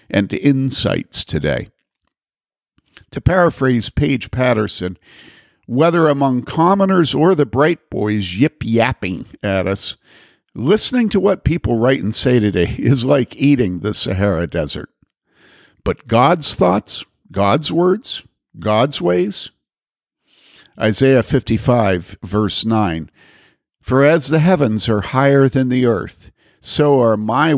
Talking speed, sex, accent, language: 120 wpm, male, American, English